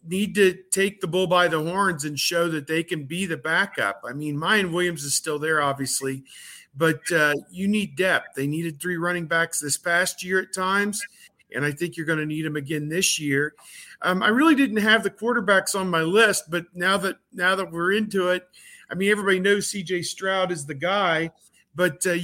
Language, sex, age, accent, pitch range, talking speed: English, male, 50-69, American, 160-195 Hz, 215 wpm